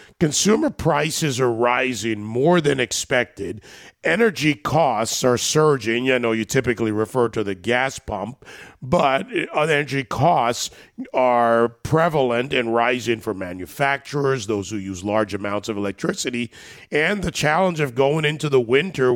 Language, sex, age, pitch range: English, male, 40-59, 115-145 Hz